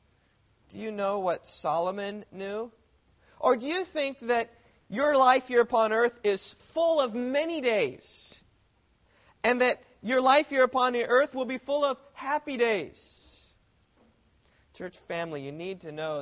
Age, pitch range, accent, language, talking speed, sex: 40-59, 150-210 Hz, American, English, 150 wpm, male